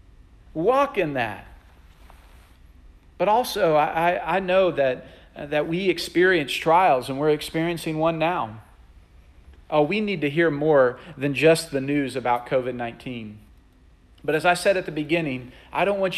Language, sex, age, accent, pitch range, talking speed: English, male, 40-59, American, 130-195 Hz, 150 wpm